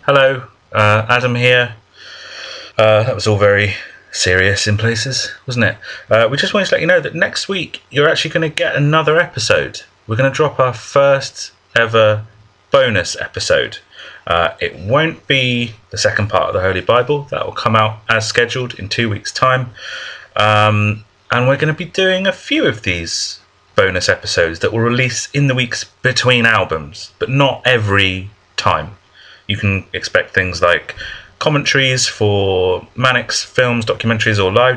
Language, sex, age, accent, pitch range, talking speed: English, male, 30-49, British, 105-130 Hz, 170 wpm